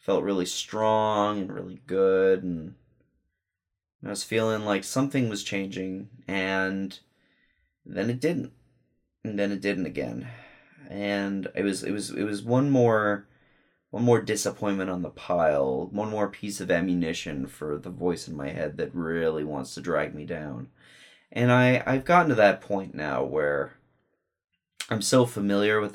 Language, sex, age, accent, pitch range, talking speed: English, male, 30-49, American, 95-115 Hz, 160 wpm